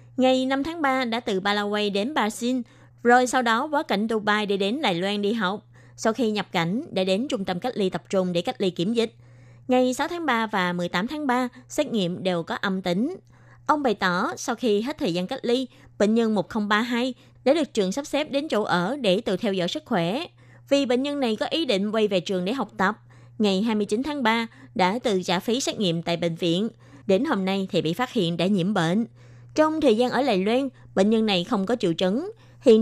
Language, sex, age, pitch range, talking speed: Vietnamese, female, 20-39, 180-250 Hz, 235 wpm